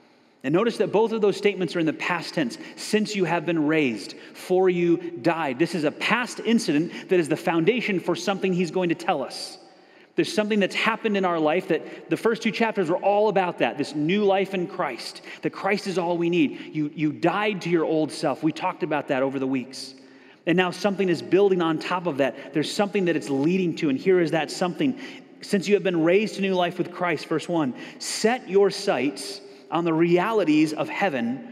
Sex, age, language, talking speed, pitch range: male, 30-49, English, 225 wpm, 160-210 Hz